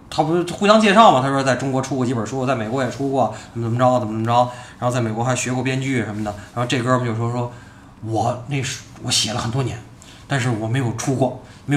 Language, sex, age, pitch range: Chinese, male, 20-39, 115-175 Hz